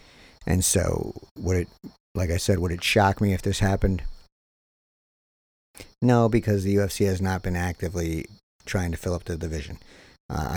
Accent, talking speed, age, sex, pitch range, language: American, 165 wpm, 50-69, male, 85-100 Hz, English